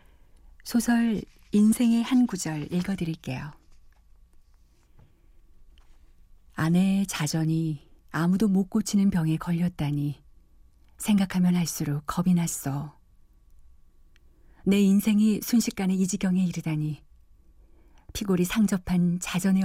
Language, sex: Korean, female